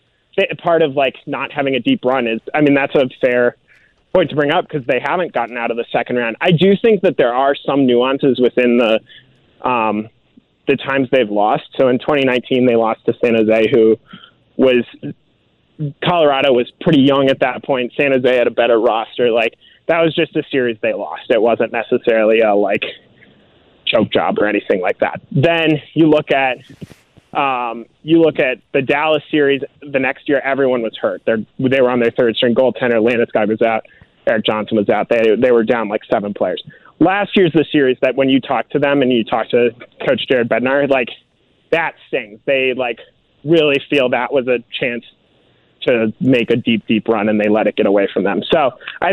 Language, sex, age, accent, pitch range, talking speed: English, male, 20-39, American, 115-145 Hz, 205 wpm